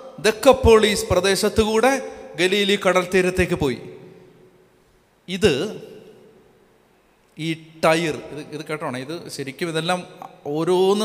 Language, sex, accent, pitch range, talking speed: Malayalam, male, native, 170-225 Hz, 80 wpm